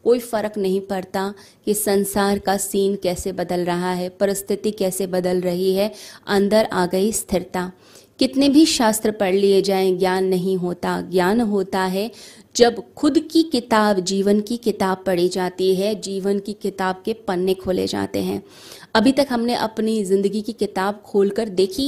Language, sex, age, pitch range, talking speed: Hindi, female, 20-39, 185-215 Hz, 175 wpm